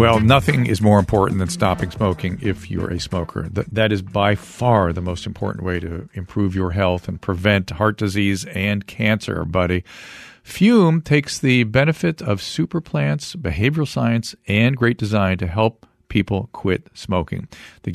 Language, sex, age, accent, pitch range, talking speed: English, male, 50-69, American, 100-140 Hz, 165 wpm